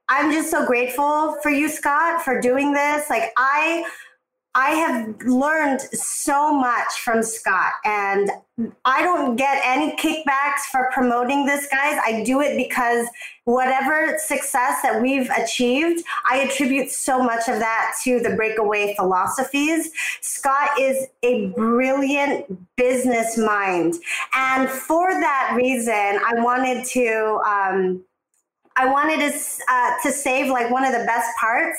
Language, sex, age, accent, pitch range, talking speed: English, female, 30-49, American, 235-290 Hz, 140 wpm